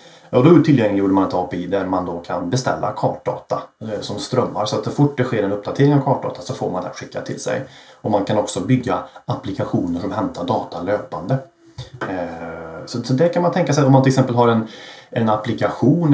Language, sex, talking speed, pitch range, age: Swedish, male, 205 wpm, 105-130 Hz, 30-49